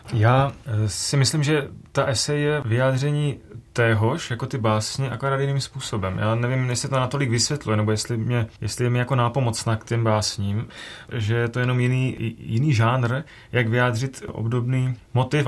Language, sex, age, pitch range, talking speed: Czech, male, 30-49, 115-130 Hz, 165 wpm